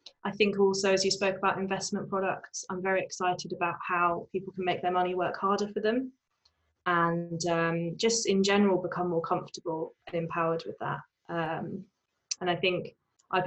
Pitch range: 165-185 Hz